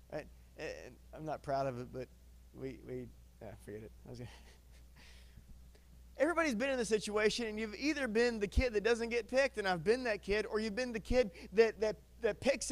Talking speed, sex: 205 wpm, male